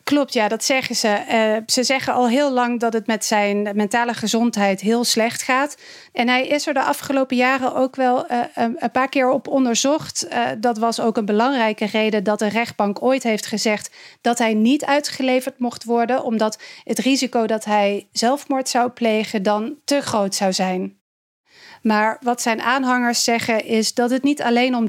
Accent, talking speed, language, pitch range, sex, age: Dutch, 190 wpm, Dutch, 220-260 Hz, female, 40-59